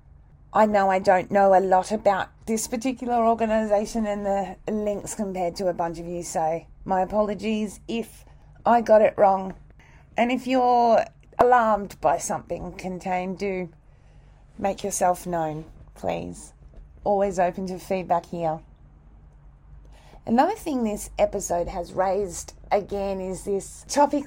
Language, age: English, 30-49